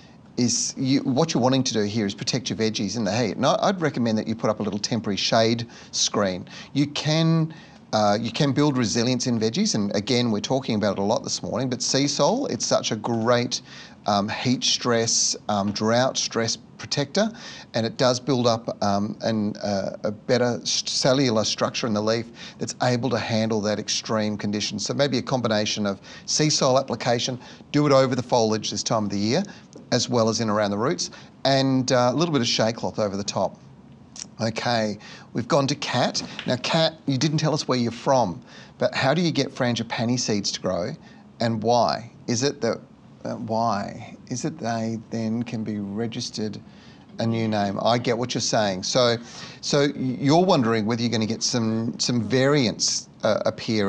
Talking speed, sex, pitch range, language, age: 195 wpm, male, 110-130 Hz, English, 40-59